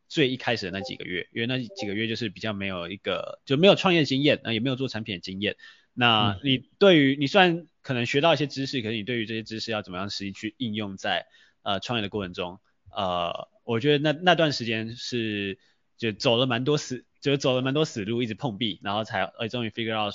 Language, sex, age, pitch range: Chinese, male, 20-39, 100-130 Hz